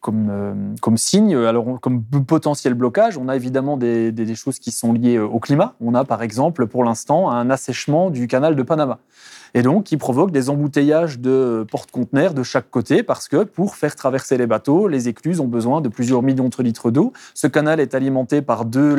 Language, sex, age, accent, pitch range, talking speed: French, male, 20-39, French, 115-135 Hz, 210 wpm